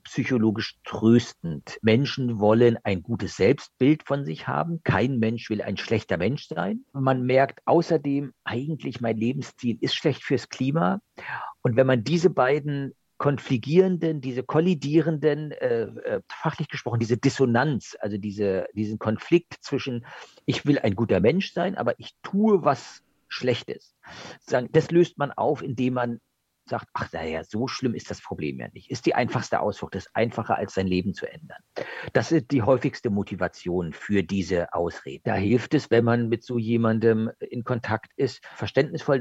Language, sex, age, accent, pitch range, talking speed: German, male, 50-69, German, 110-145 Hz, 160 wpm